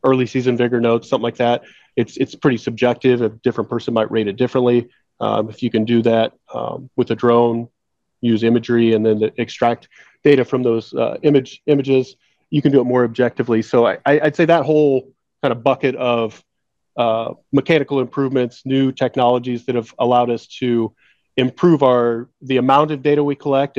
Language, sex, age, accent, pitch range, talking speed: English, male, 30-49, American, 120-135 Hz, 190 wpm